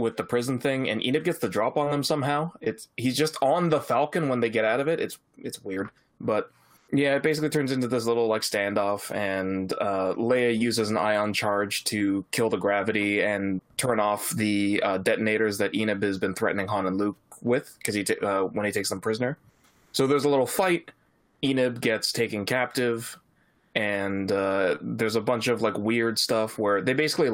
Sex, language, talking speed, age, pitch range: male, English, 205 wpm, 20-39, 105-130 Hz